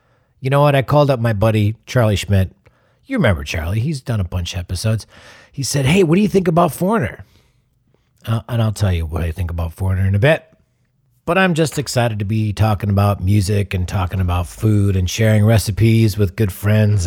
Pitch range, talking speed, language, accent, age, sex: 100-145 Hz, 210 wpm, English, American, 40-59, male